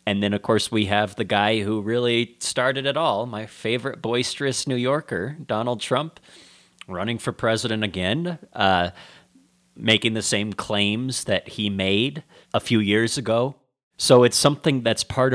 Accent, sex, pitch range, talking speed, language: American, male, 100-130 Hz, 160 wpm, English